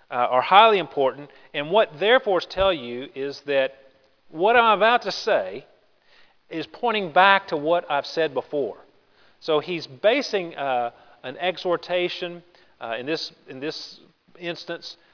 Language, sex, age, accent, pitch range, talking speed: English, male, 40-59, American, 135-180 Hz, 145 wpm